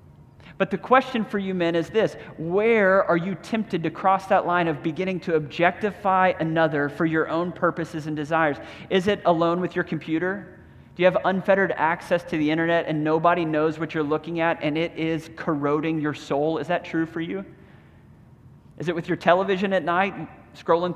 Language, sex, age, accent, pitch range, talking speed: English, male, 30-49, American, 155-175 Hz, 190 wpm